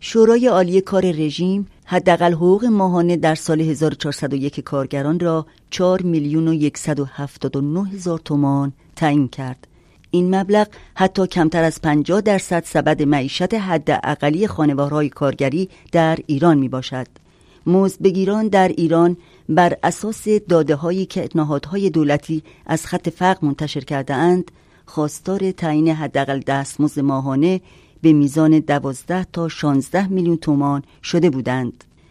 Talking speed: 120 wpm